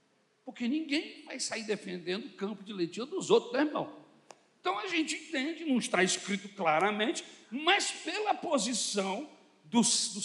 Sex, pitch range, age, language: male, 180-255 Hz, 60-79, Portuguese